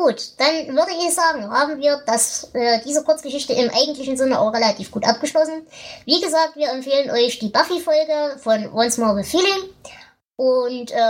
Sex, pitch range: male, 200-270 Hz